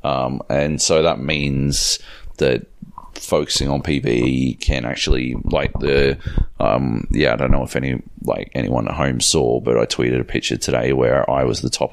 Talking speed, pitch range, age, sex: 180 wpm, 65-75 Hz, 30-49, male